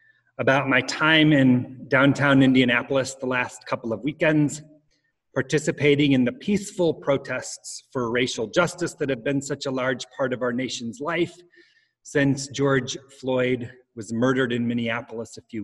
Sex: male